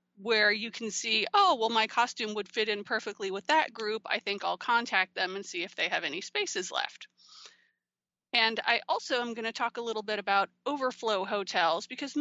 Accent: American